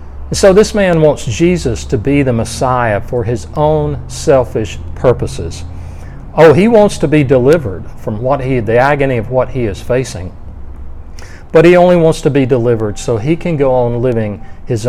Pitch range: 95-155 Hz